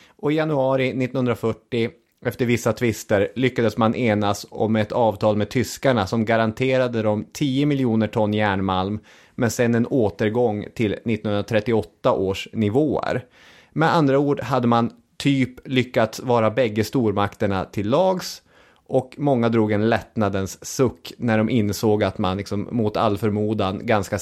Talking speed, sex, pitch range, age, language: 145 wpm, male, 105-140 Hz, 30-49, English